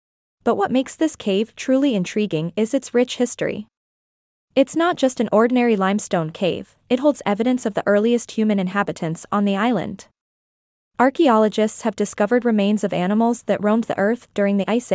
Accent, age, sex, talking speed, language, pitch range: American, 20-39, female, 170 wpm, English, 200-245 Hz